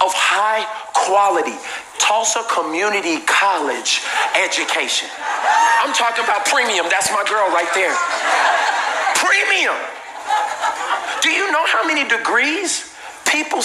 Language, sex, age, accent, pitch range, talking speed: English, male, 40-59, American, 240-405 Hz, 105 wpm